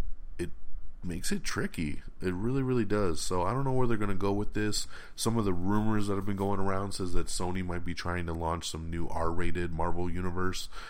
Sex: male